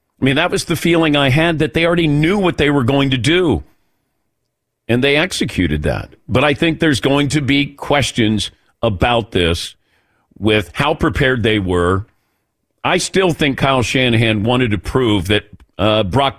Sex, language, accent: male, English, American